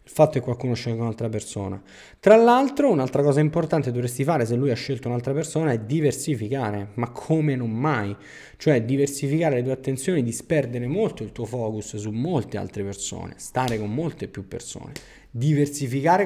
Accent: native